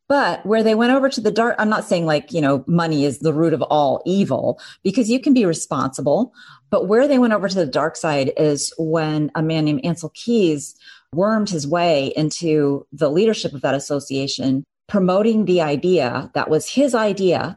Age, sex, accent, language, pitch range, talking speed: 30-49, female, American, English, 145-200 Hz, 200 wpm